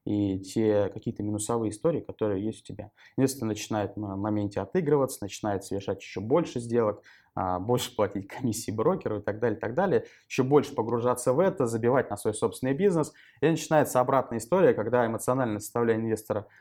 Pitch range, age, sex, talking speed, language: 105-125 Hz, 20-39, male, 165 wpm, Russian